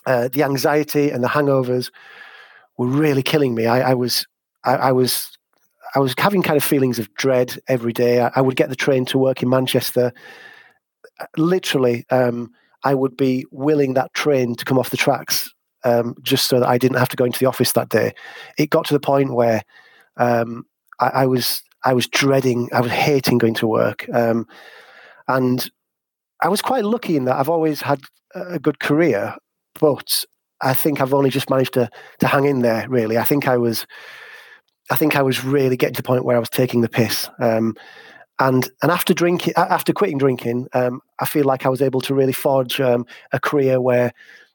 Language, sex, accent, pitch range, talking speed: English, male, British, 125-150 Hz, 200 wpm